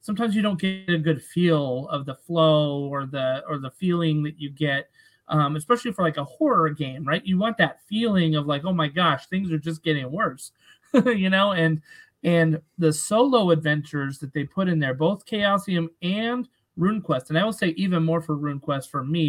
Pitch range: 145-180 Hz